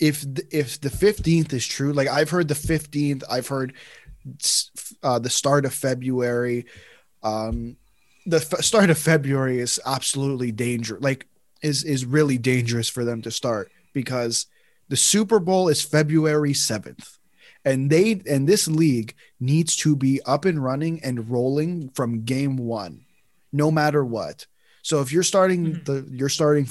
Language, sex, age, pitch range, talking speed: English, male, 20-39, 125-150 Hz, 155 wpm